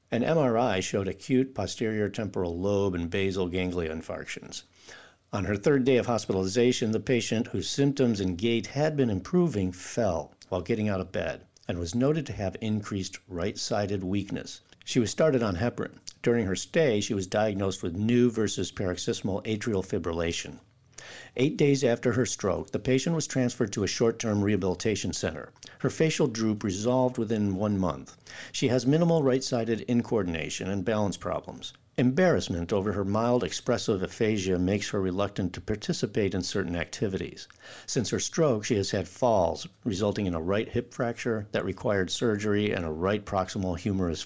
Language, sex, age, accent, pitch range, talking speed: English, male, 50-69, American, 95-120 Hz, 165 wpm